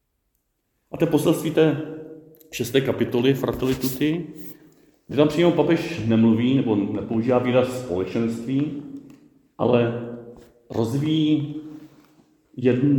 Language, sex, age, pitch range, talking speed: Czech, male, 40-59, 105-130 Hz, 85 wpm